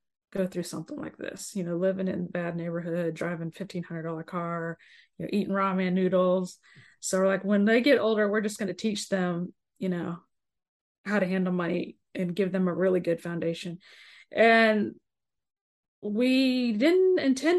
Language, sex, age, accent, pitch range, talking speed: English, female, 20-39, American, 180-235 Hz, 170 wpm